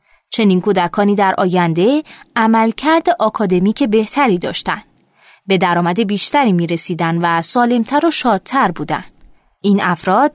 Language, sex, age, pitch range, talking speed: Persian, female, 20-39, 190-265 Hz, 115 wpm